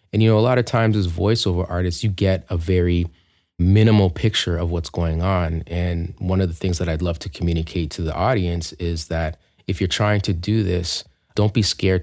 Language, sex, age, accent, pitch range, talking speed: English, male, 30-49, American, 85-110 Hz, 220 wpm